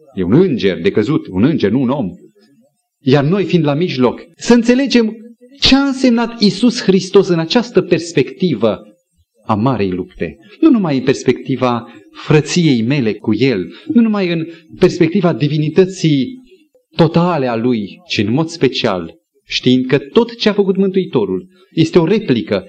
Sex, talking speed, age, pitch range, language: male, 150 wpm, 30-49, 130-215 Hz, Romanian